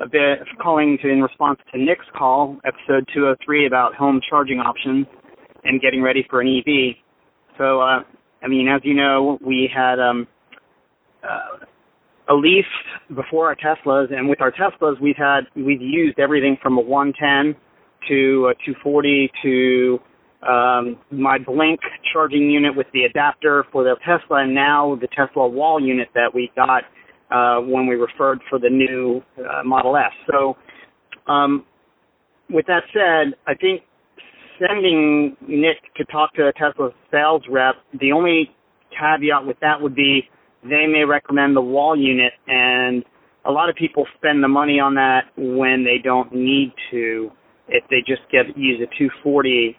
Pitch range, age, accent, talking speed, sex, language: 130-145 Hz, 40-59, American, 165 wpm, male, English